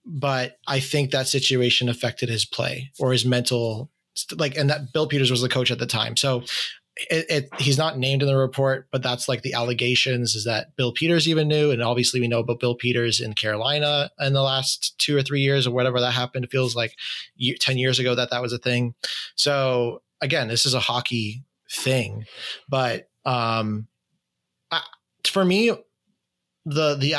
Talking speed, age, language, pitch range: 190 wpm, 20-39, English, 125-145 Hz